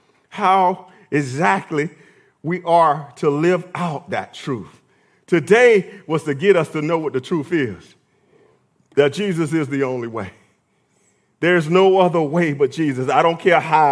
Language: English